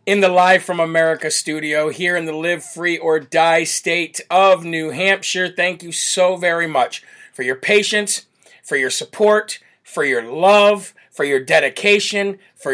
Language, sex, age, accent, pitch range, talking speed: English, male, 40-59, American, 155-185 Hz, 165 wpm